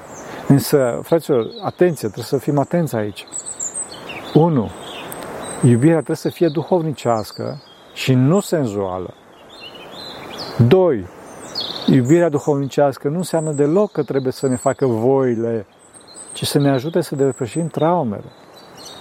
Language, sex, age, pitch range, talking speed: Romanian, male, 50-69, 125-155 Hz, 115 wpm